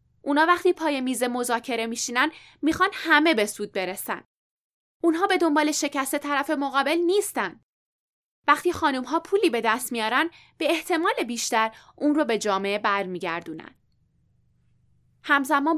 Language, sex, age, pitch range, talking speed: Persian, female, 10-29, 225-335 Hz, 125 wpm